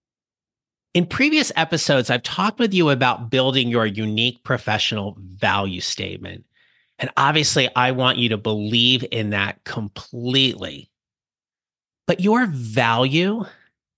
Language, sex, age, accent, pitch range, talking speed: English, male, 30-49, American, 120-165 Hz, 115 wpm